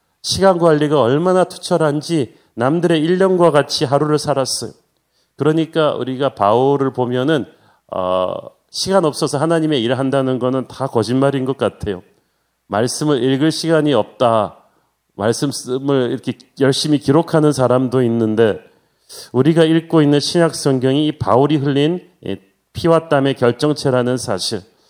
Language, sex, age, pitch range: Korean, male, 40-59, 135-165 Hz